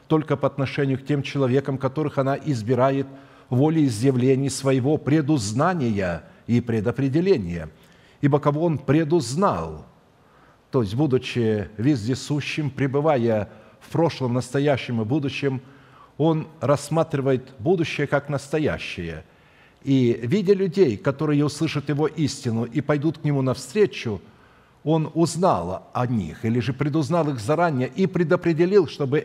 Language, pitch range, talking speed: Russian, 130-155 Hz, 120 wpm